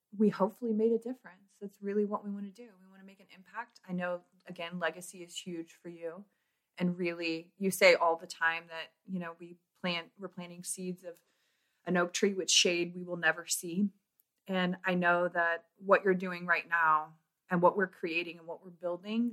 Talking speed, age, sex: 210 wpm, 30-49, female